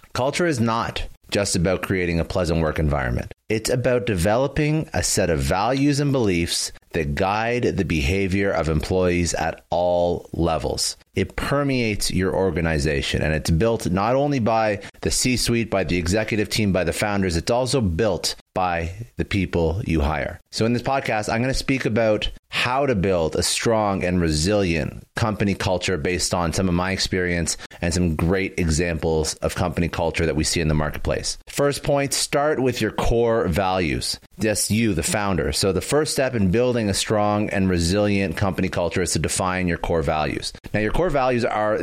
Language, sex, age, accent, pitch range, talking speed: English, male, 30-49, American, 85-110 Hz, 180 wpm